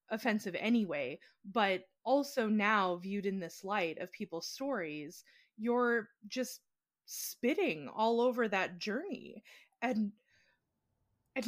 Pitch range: 185-240 Hz